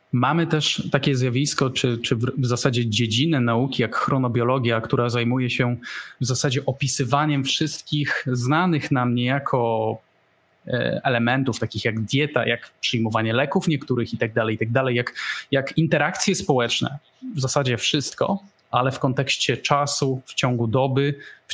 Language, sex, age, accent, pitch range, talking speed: Polish, male, 20-39, native, 120-145 Hz, 140 wpm